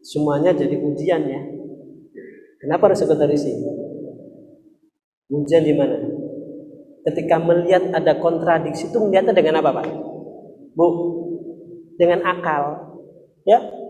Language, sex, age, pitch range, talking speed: Indonesian, male, 40-59, 190-305 Hz, 100 wpm